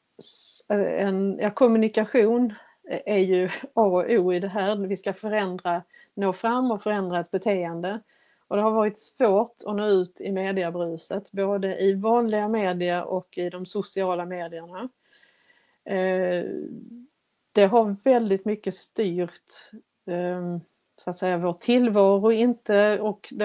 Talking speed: 140 wpm